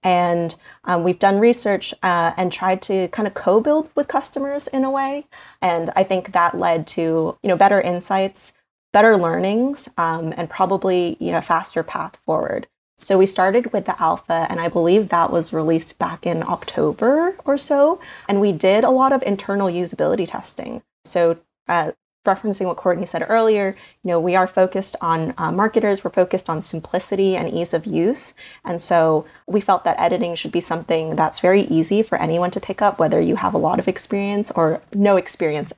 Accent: American